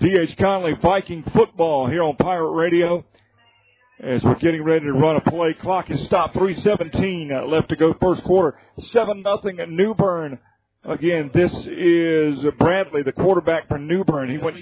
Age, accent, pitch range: 50-69, American, 160-200 Hz